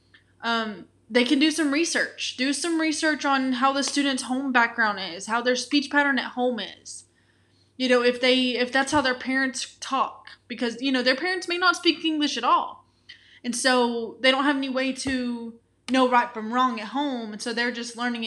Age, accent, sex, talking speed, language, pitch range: 10-29, American, female, 205 wpm, English, 225-265 Hz